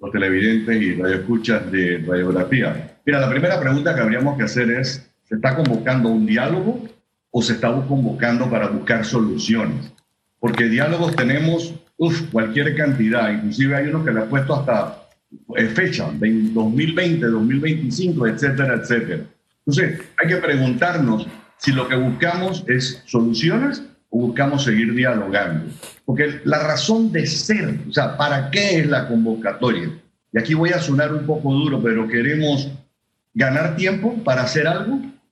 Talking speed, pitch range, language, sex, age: 150 wpm, 115-160 Hz, Spanish, male, 50-69